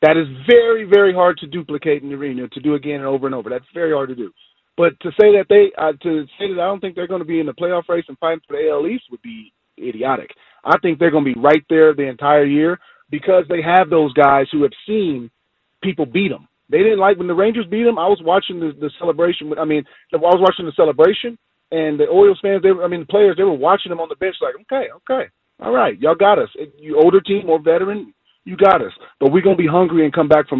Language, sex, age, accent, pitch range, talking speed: English, male, 30-49, American, 140-180 Hz, 270 wpm